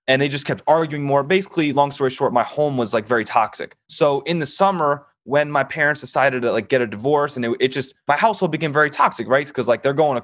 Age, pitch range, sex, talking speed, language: 20-39, 125-155 Hz, male, 260 wpm, English